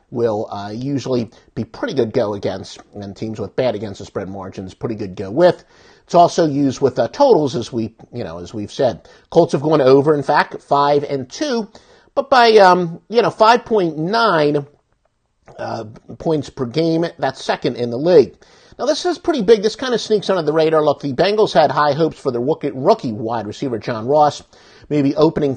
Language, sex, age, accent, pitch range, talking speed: English, male, 50-69, American, 130-185 Hz, 195 wpm